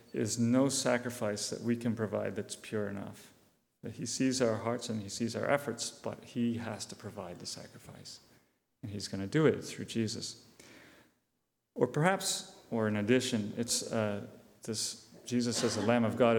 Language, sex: English, male